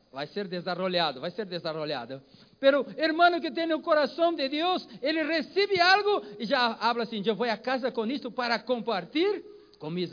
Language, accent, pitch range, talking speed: Spanish, Brazilian, 210-305 Hz, 195 wpm